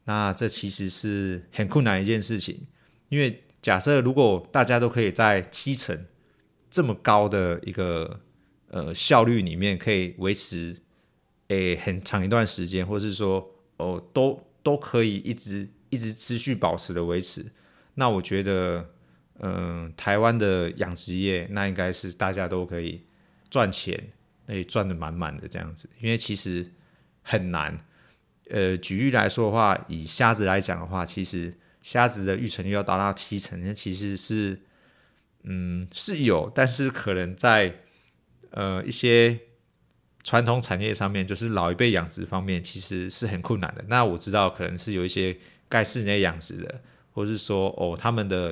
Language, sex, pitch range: Chinese, male, 90-115 Hz